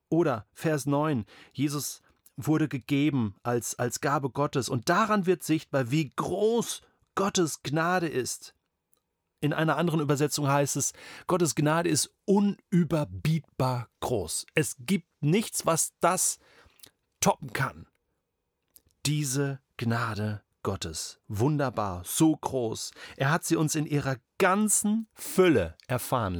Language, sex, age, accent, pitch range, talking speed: German, male, 40-59, German, 110-160 Hz, 120 wpm